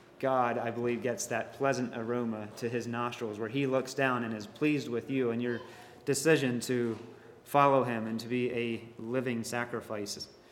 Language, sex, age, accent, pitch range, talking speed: English, male, 30-49, American, 120-140 Hz, 175 wpm